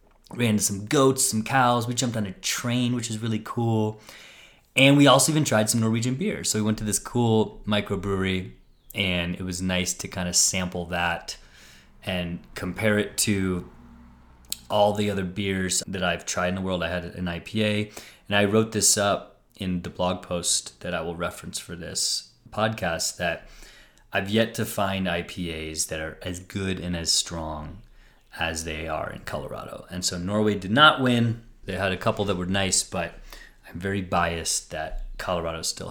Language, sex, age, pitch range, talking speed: English, male, 30-49, 90-110 Hz, 185 wpm